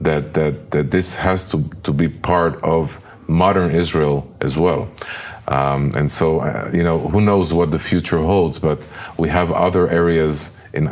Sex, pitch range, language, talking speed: male, 75-95 Hz, English, 175 wpm